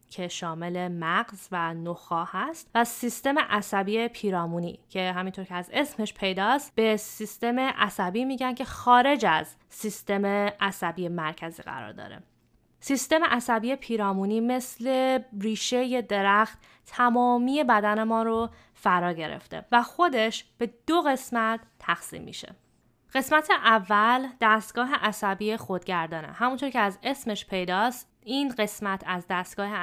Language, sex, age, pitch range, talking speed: English, female, 20-39, 195-245 Hz, 125 wpm